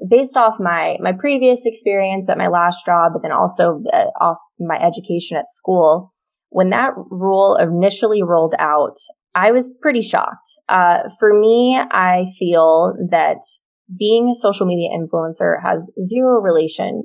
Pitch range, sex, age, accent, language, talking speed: 170-225 Hz, female, 20-39, American, English, 150 wpm